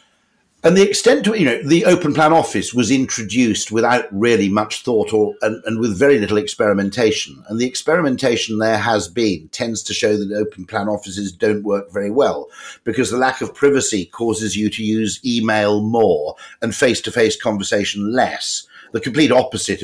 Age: 50-69